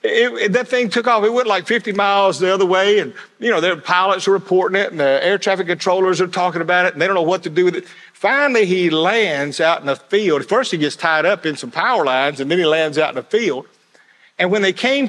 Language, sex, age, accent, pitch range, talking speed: English, male, 50-69, American, 165-225 Hz, 270 wpm